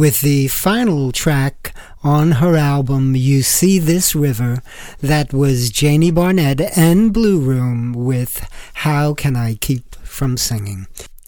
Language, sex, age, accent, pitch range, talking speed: English, male, 50-69, American, 135-165 Hz, 135 wpm